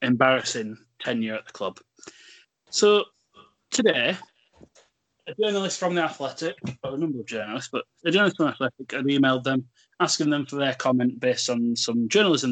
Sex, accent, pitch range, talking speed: male, British, 125-180 Hz, 170 wpm